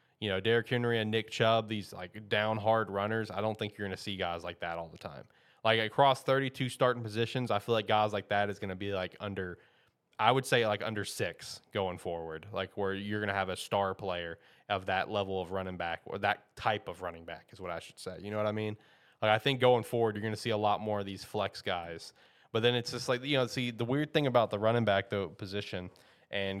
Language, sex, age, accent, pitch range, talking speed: English, male, 20-39, American, 95-115 Hz, 255 wpm